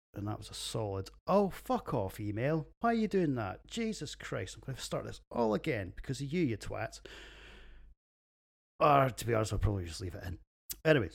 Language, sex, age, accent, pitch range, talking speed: English, male, 30-49, British, 90-125 Hz, 205 wpm